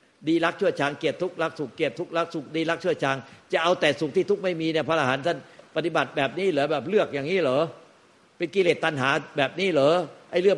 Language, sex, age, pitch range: Thai, male, 60-79, 140-175 Hz